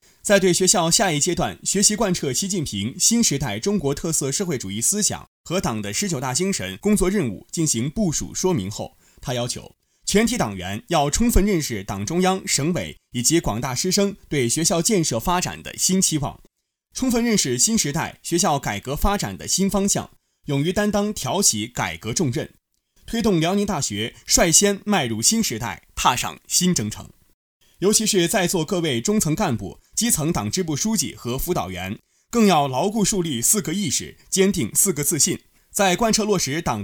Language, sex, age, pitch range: Chinese, male, 20-39, 130-200 Hz